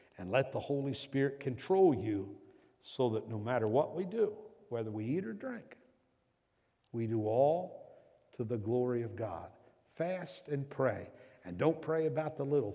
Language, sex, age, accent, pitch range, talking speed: English, male, 60-79, American, 105-140 Hz, 170 wpm